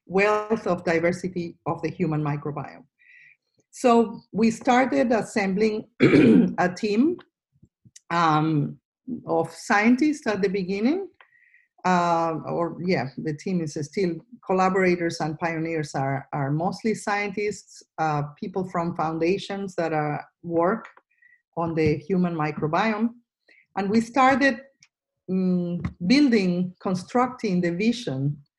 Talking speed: 105 wpm